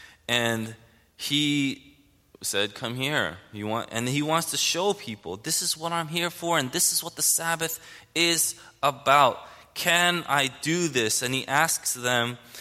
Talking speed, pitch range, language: 165 wpm, 105-135 Hz, English